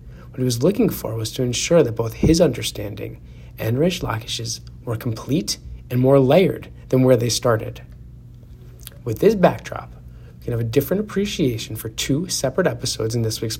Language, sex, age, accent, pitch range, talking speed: English, male, 30-49, American, 115-150 Hz, 175 wpm